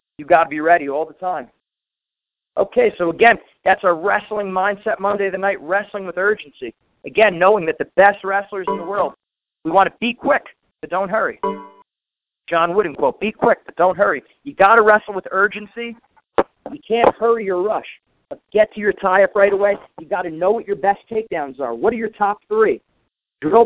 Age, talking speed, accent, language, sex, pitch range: 40-59, 205 wpm, American, English, male, 190-220 Hz